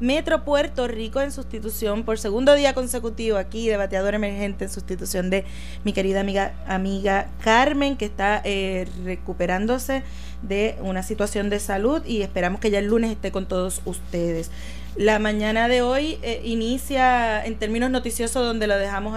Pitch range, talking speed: 195-230 Hz, 160 wpm